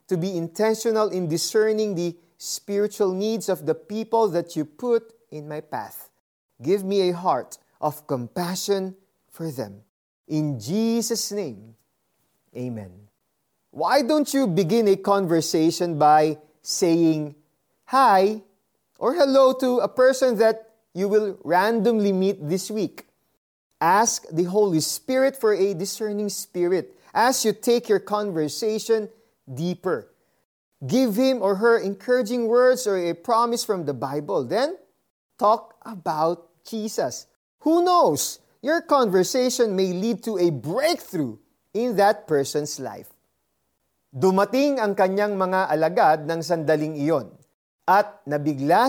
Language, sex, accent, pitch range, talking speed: Filipino, male, native, 160-225 Hz, 125 wpm